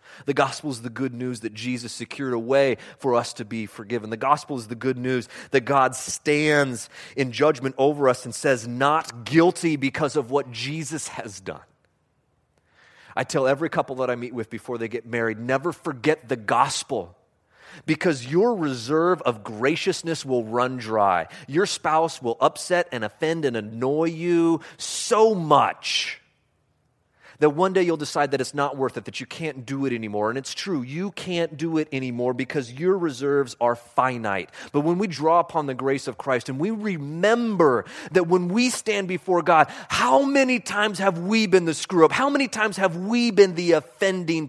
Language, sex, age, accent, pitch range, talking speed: English, male, 30-49, American, 125-180 Hz, 185 wpm